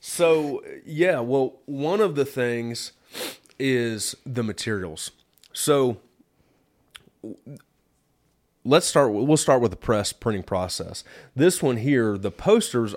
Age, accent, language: 30-49, American, English